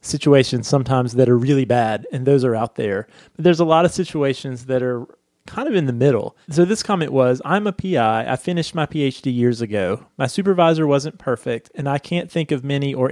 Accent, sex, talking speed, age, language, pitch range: American, male, 220 wpm, 30-49, English, 125-155 Hz